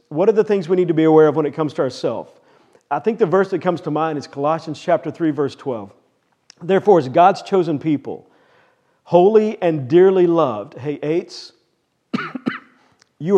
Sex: male